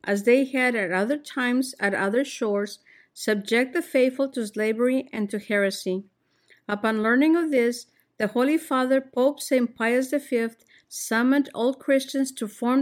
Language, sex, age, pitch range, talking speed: English, female, 50-69, 220-265 Hz, 155 wpm